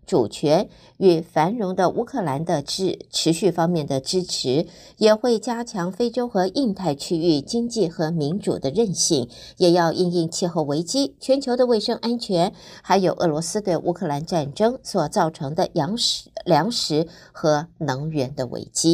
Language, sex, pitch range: Chinese, female, 170-225 Hz